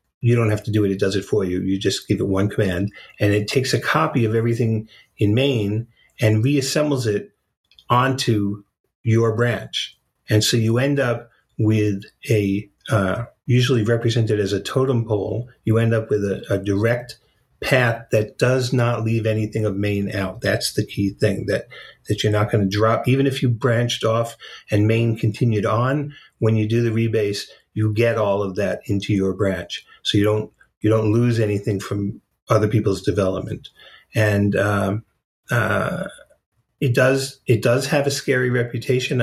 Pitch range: 105-125 Hz